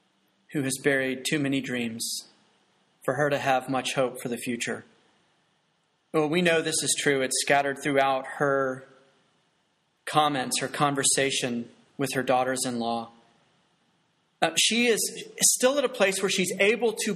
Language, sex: English, male